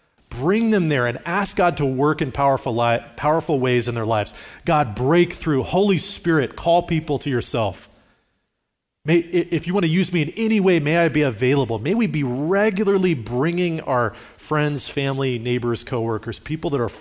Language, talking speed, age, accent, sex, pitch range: English, 185 wpm, 30-49, American, male, 125-185 Hz